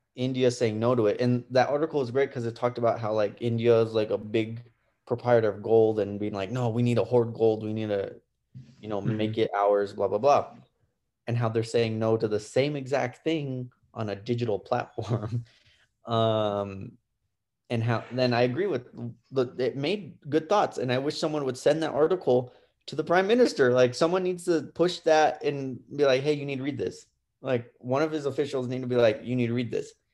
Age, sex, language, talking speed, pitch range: 20-39, male, English, 220 wpm, 115-150 Hz